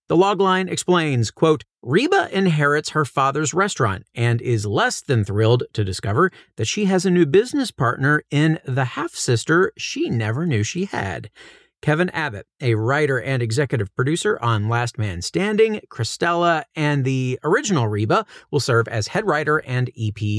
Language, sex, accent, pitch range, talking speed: English, male, American, 115-160 Hz, 160 wpm